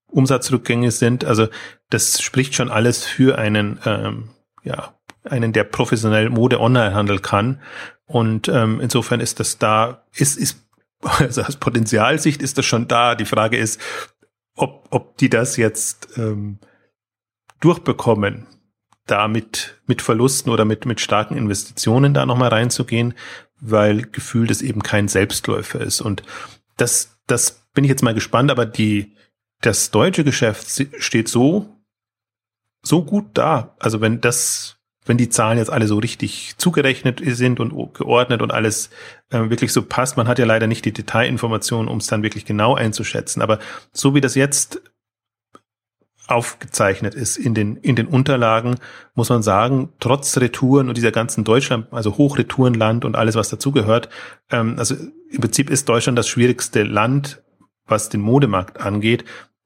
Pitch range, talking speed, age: 110-130 Hz, 150 wpm, 30-49